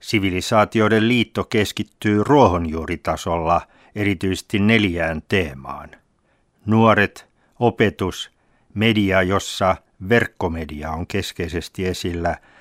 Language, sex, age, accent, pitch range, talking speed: Finnish, male, 60-79, native, 90-110 Hz, 70 wpm